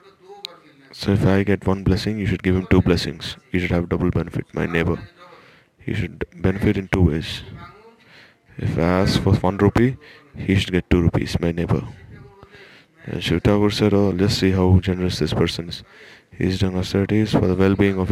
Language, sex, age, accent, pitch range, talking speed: English, male, 20-39, Indian, 90-105 Hz, 190 wpm